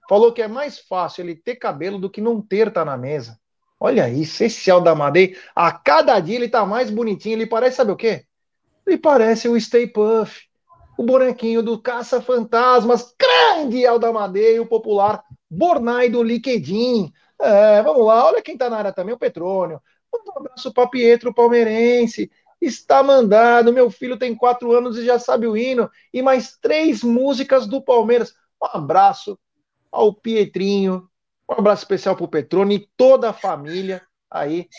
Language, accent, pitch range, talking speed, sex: Portuguese, Brazilian, 180-245 Hz, 165 wpm, male